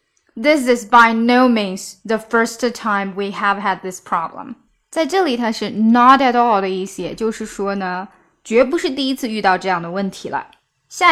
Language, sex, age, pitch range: Chinese, female, 10-29, 205-270 Hz